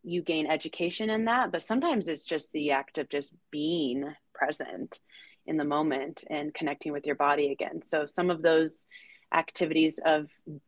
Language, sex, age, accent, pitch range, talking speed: English, female, 20-39, American, 150-180 Hz, 170 wpm